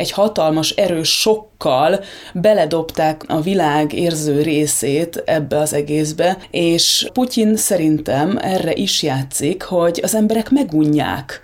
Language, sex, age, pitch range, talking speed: Hungarian, female, 20-39, 155-190 Hz, 115 wpm